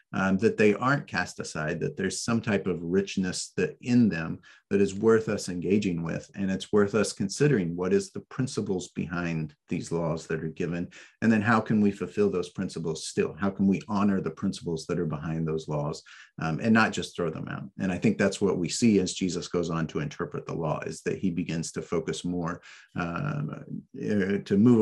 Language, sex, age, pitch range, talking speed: English, male, 40-59, 90-110 Hz, 215 wpm